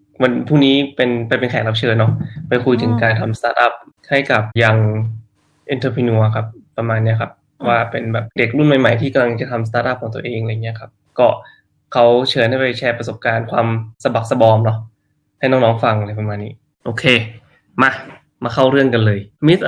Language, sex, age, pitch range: Thai, male, 20-39, 115-140 Hz